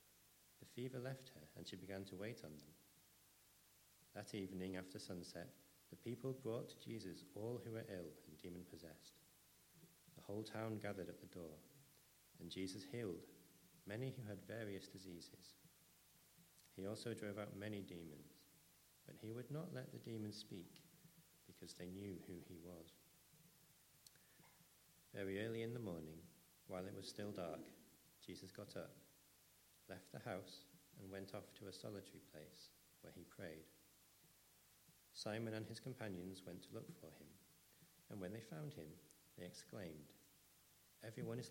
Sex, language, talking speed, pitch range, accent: male, English, 150 wpm, 90-115 Hz, British